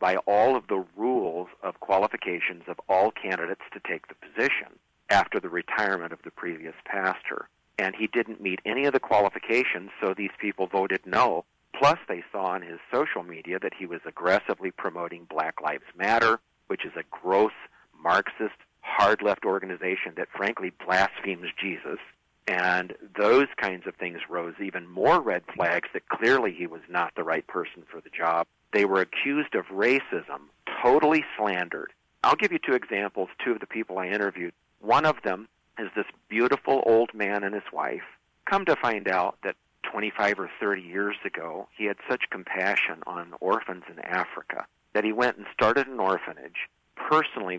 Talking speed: 170 wpm